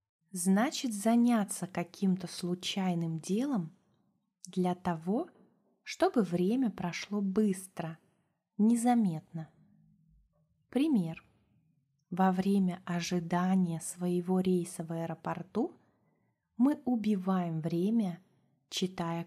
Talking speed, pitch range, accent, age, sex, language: 75 wpm, 170-210 Hz, native, 20-39, female, Russian